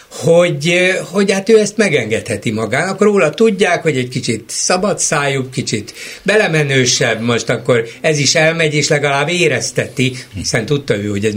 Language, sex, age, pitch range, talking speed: Hungarian, male, 60-79, 125-165 Hz, 155 wpm